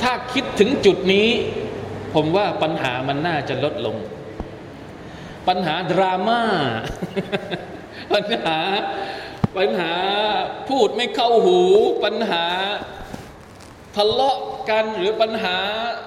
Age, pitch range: 20-39, 175-240 Hz